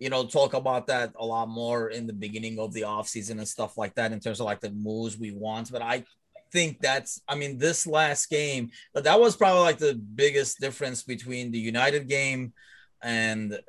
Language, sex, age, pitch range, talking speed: English, male, 30-49, 110-135 Hz, 205 wpm